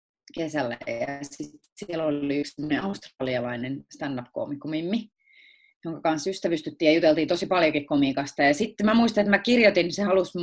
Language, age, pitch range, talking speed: Finnish, 30-49, 145-225 Hz, 145 wpm